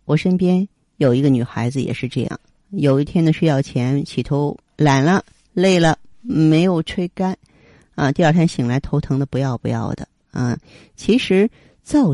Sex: female